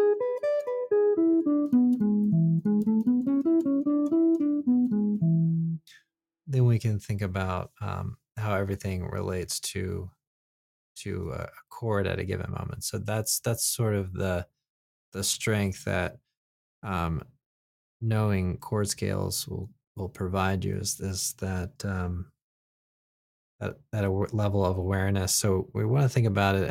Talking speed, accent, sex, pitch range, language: 115 wpm, American, male, 95-125 Hz, English